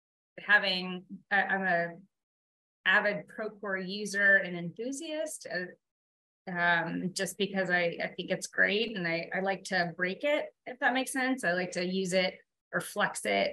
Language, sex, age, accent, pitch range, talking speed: English, female, 20-39, American, 180-195 Hz, 165 wpm